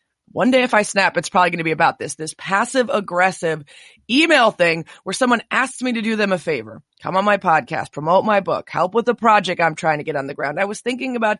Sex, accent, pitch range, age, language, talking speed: female, American, 170-230 Hz, 20-39, English, 255 wpm